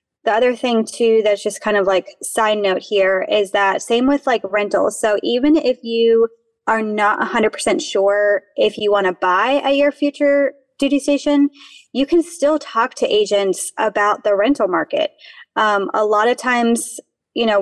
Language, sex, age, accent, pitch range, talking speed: English, female, 20-39, American, 205-255 Hz, 185 wpm